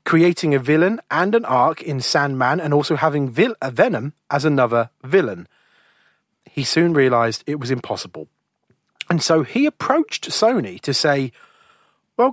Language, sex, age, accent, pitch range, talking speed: English, male, 30-49, British, 125-175 Hz, 150 wpm